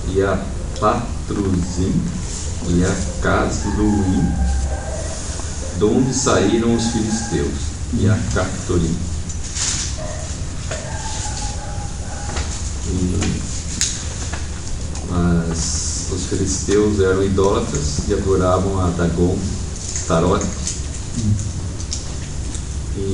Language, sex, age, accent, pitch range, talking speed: English, male, 50-69, Brazilian, 80-95 Hz, 60 wpm